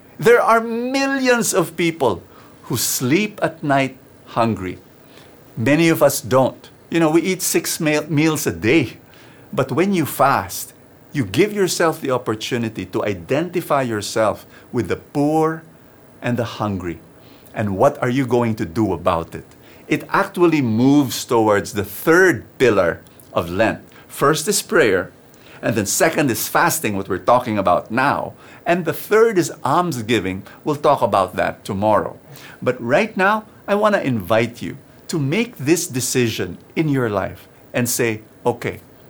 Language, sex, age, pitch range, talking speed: English, male, 50-69, 115-165 Hz, 150 wpm